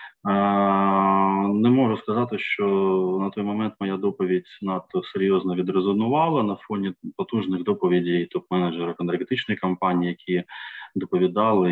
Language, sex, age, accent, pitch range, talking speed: Ukrainian, male, 20-39, native, 90-100 Hz, 110 wpm